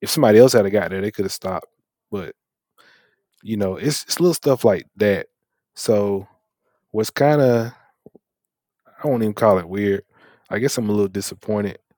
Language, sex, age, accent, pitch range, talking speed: English, male, 20-39, American, 95-110 Hz, 180 wpm